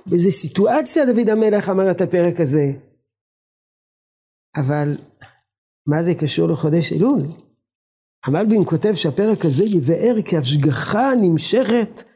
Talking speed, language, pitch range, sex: 110 wpm, Hebrew, 150-215 Hz, male